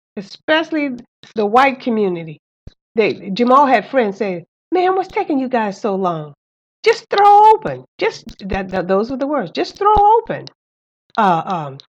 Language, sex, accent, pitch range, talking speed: English, female, American, 185-275 Hz, 155 wpm